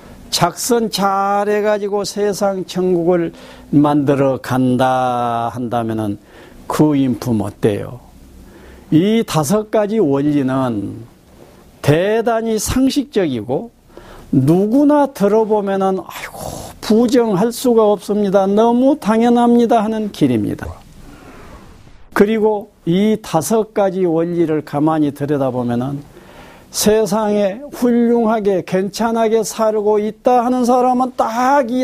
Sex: male